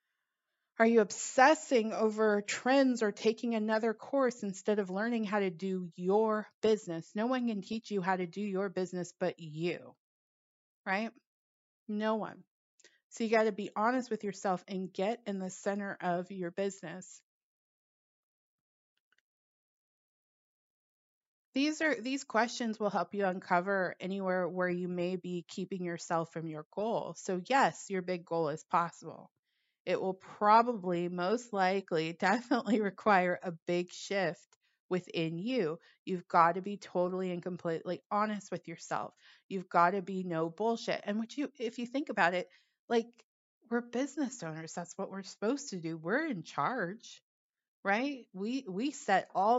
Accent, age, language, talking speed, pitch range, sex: American, 30-49, English, 155 wpm, 180-225 Hz, female